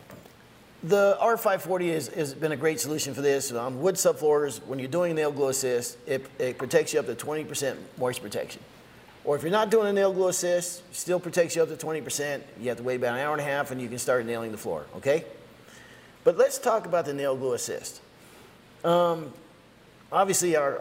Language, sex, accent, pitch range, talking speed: English, male, American, 120-170 Hz, 210 wpm